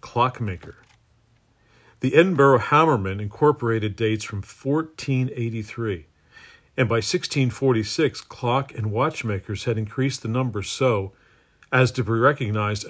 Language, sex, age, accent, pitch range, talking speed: English, male, 50-69, American, 105-130 Hz, 105 wpm